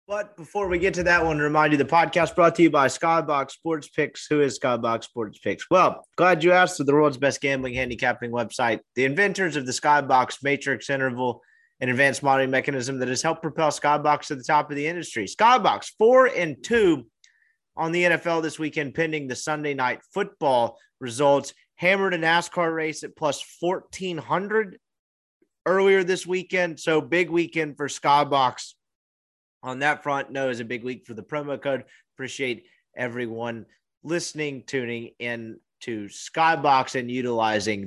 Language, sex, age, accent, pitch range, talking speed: English, male, 30-49, American, 130-170 Hz, 175 wpm